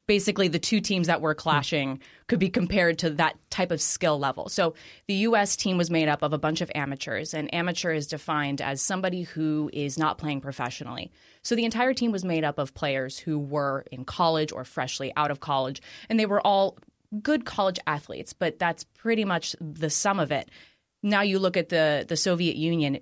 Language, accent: English, American